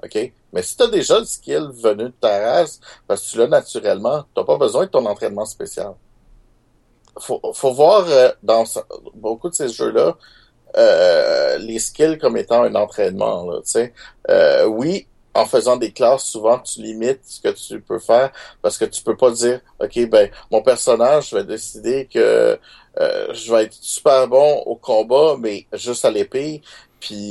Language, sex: French, male